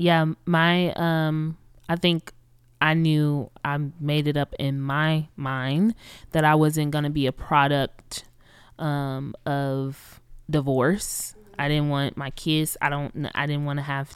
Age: 20-39